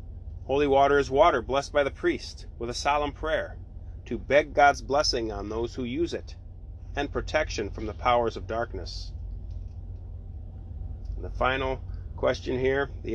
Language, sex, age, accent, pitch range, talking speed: English, male, 30-49, American, 85-130 Hz, 155 wpm